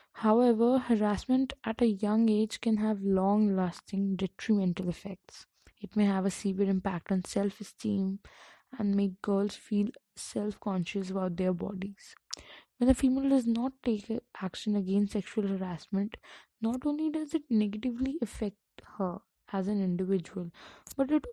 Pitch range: 190-225 Hz